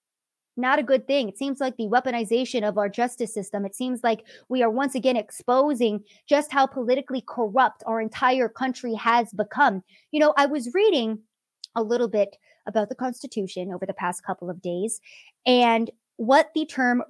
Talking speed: 180 wpm